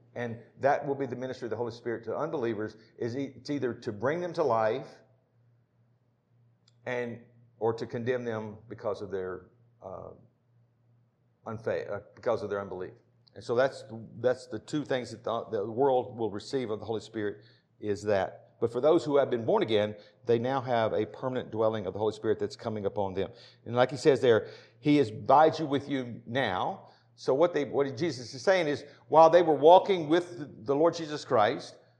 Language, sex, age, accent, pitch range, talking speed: English, male, 50-69, American, 115-145 Hz, 195 wpm